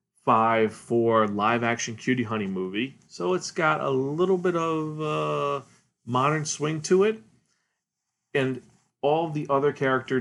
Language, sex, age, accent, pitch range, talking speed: English, male, 40-59, American, 115-140 Hz, 125 wpm